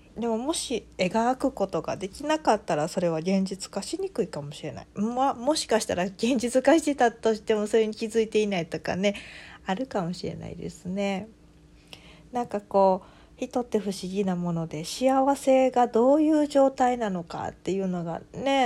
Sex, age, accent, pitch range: female, 40-59, native, 175-235 Hz